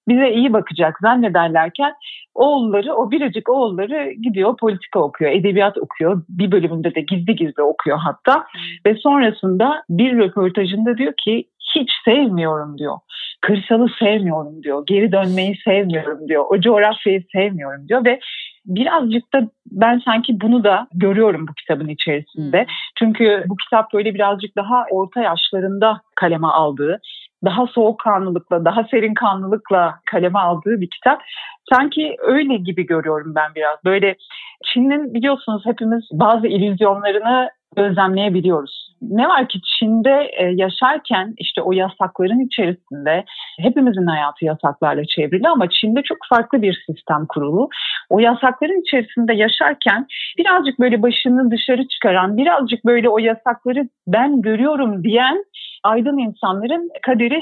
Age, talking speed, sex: 40-59, 125 wpm, female